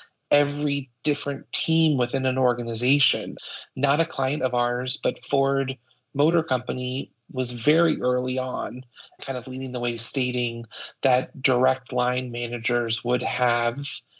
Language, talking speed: English, 130 wpm